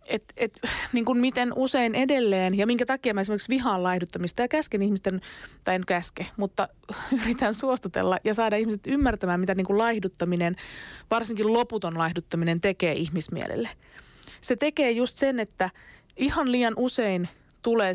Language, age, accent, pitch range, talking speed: Finnish, 20-39, native, 180-235 Hz, 145 wpm